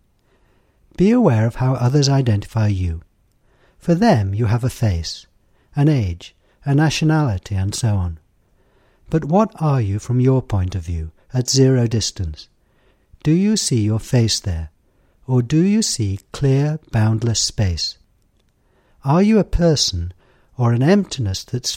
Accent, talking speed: British, 145 wpm